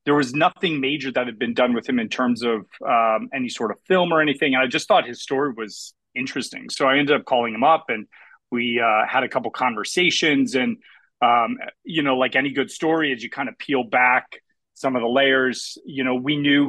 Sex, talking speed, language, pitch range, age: male, 230 wpm, English, 125-160 Hz, 30-49